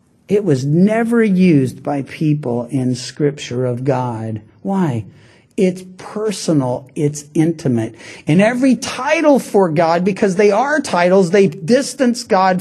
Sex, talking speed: male, 130 wpm